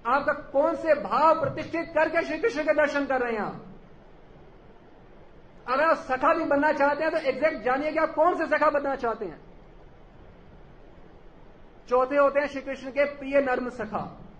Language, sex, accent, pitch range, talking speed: Hindi, male, native, 220-280 Hz, 175 wpm